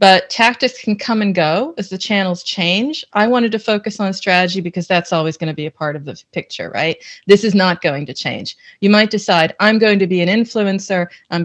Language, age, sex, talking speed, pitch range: English, 40-59, female, 230 wpm, 180-230 Hz